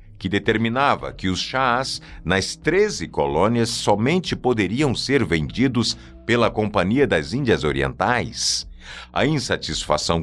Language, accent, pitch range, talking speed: Portuguese, Brazilian, 85-125 Hz, 110 wpm